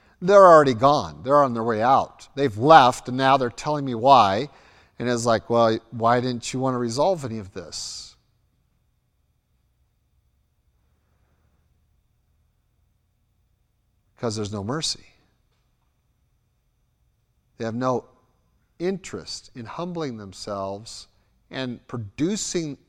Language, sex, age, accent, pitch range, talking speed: English, male, 50-69, American, 120-175 Hz, 110 wpm